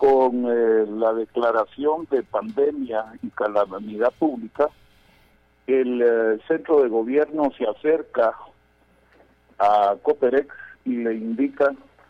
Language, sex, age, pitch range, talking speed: Spanish, male, 50-69, 105-155 Hz, 105 wpm